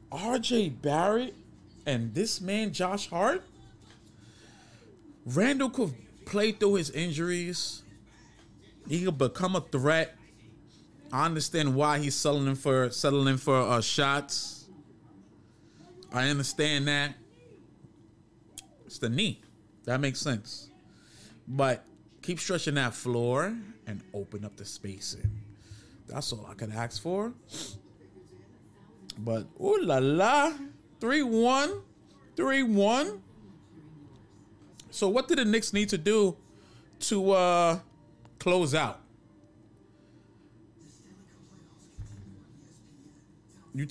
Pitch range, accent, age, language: 110-180 Hz, American, 30-49, English